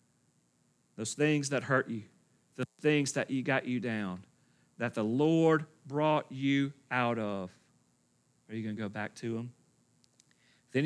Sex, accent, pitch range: male, American, 115-155 Hz